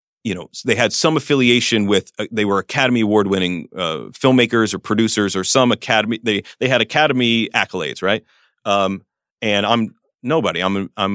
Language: English